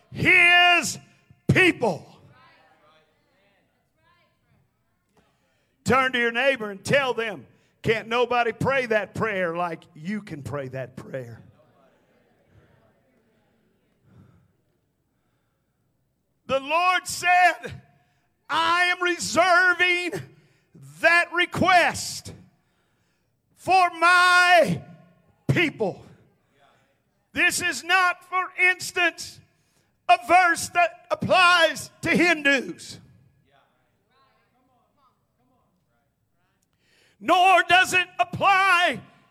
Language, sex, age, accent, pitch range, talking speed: English, male, 50-69, American, 240-360 Hz, 70 wpm